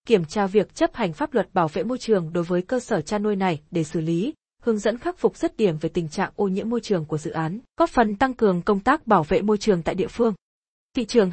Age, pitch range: 20-39, 185-235 Hz